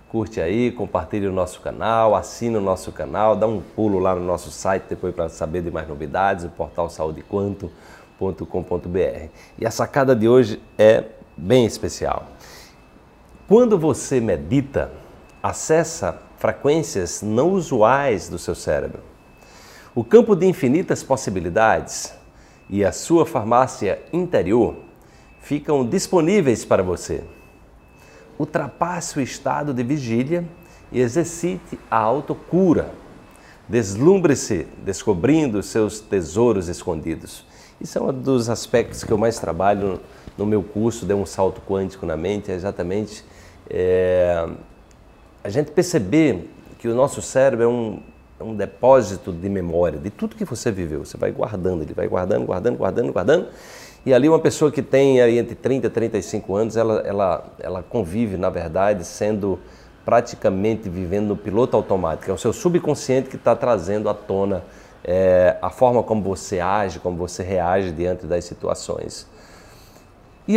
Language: Portuguese